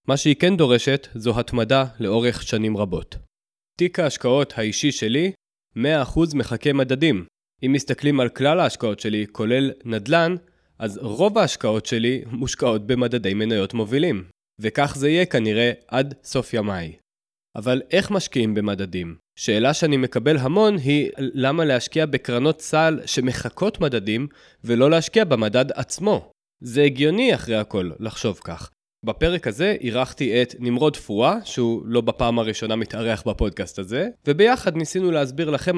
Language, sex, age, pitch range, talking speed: Hebrew, male, 20-39, 115-160 Hz, 135 wpm